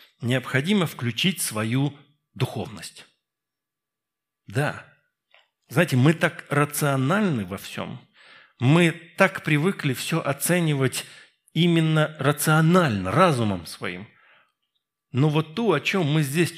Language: Russian